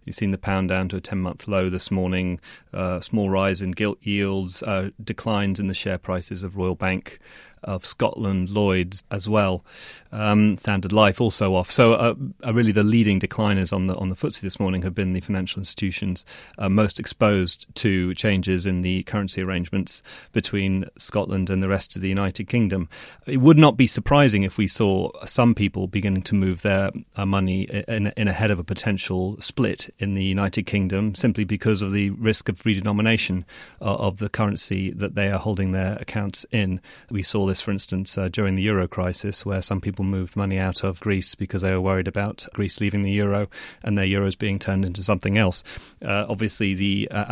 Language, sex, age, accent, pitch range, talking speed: English, male, 30-49, British, 95-105 Hz, 200 wpm